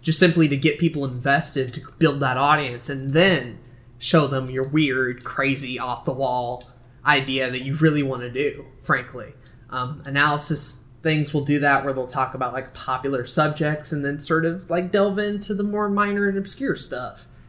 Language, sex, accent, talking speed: English, male, American, 180 wpm